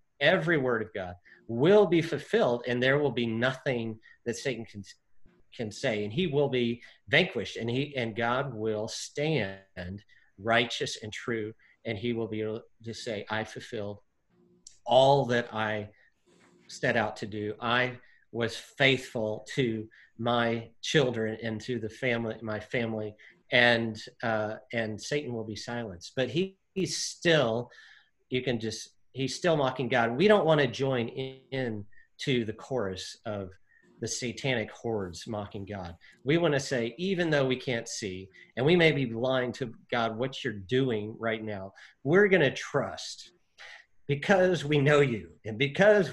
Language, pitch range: English, 110-140 Hz